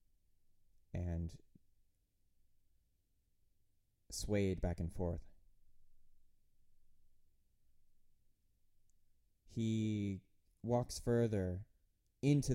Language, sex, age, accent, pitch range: English, male, 20-39, American, 95-125 Hz